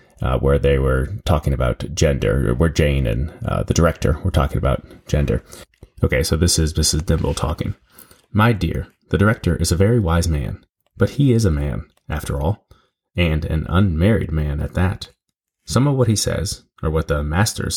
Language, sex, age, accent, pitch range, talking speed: English, male, 30-49, American, 75-100 Hz, 195 wpm